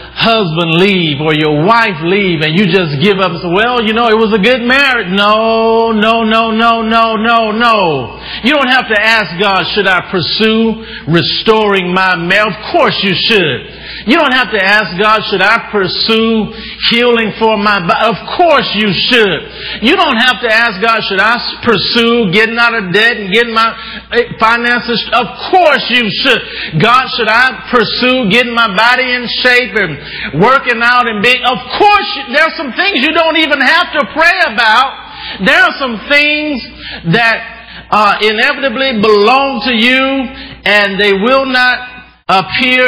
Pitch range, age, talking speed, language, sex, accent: 190-240 Hz, 50-69, 170 wpm, English, male, American